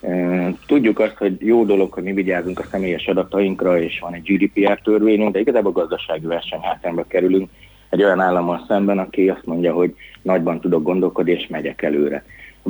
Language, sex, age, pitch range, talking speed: Hungarian, male, 30-49, 90-115 Hz, 175 wpm